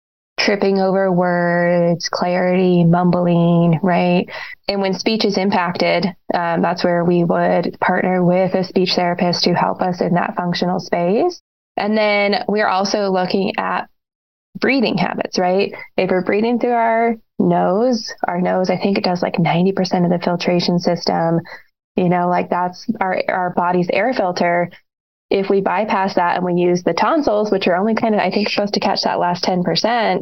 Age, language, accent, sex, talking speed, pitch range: 20-39, English, American, female, 170 wpm, 180-205 Hz